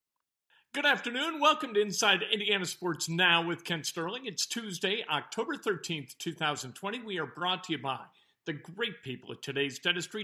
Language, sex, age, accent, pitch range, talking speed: English, male, 50-69, American, 175-220 Hz, 165 wpm